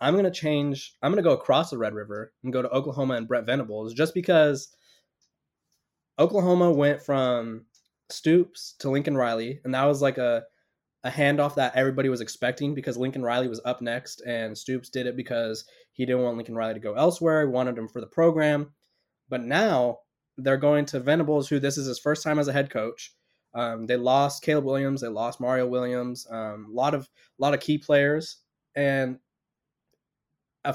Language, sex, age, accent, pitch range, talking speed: English, male, 20-39, American, 125-145 Hz, 190 wpm